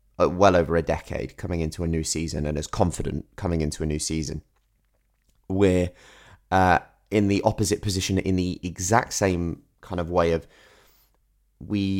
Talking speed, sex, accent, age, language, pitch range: 160 wpm, male, British, 20-39, English, 85-100 Hz